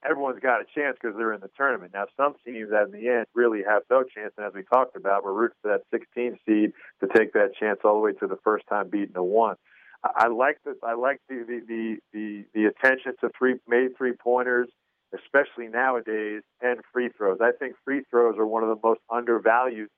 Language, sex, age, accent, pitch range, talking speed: English, male, 50-69, American, 105-125 Hz, 220 wpm